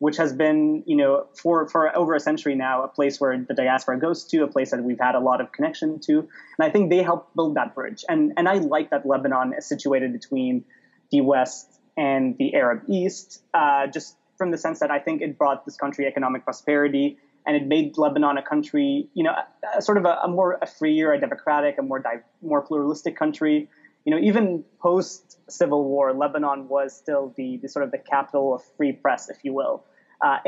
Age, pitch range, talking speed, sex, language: 20-39, 140-195 Hz, 215 wpm, male, English